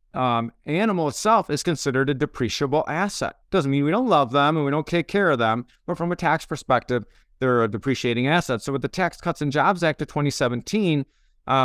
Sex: male